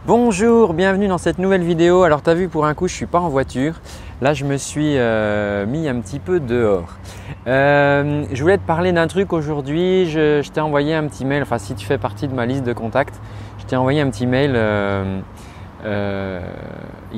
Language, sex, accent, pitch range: French, male, French, 110-155 Hz